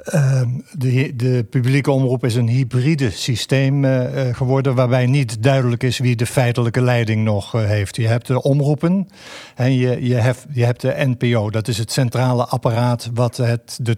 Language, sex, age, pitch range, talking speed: Dutch, male, 50-69, 115-135 Hz, 165 wpm